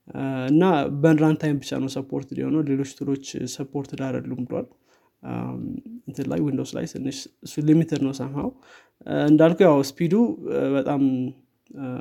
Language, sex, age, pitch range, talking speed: Amharic, male, 20-39, 135-155 Hz, 125 wpm